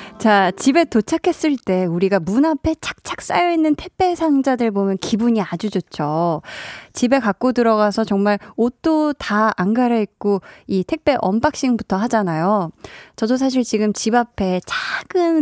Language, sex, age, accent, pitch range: Korean, female, 20-39, native, 195-270 Hz